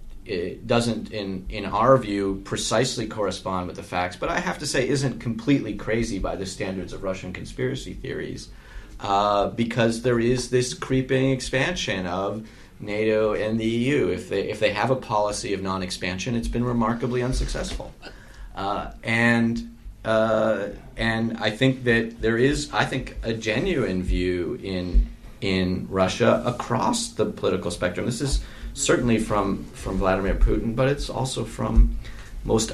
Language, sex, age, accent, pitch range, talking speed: English, male, 30-49, American, 95-120 Hz, 155 wpm